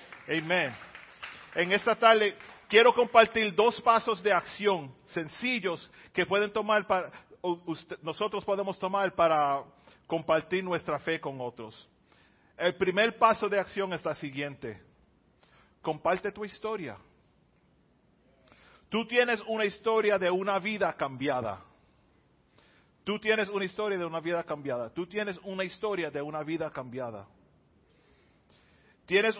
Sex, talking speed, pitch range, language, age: male, 125 wpm, 150-205 Hz, Spanish, 40-59